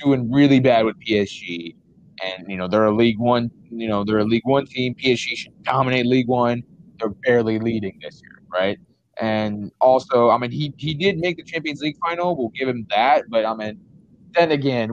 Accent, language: American, English